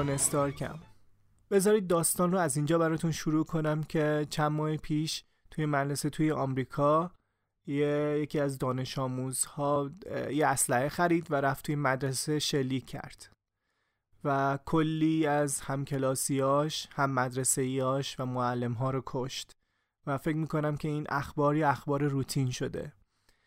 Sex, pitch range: male, 130-160 Hz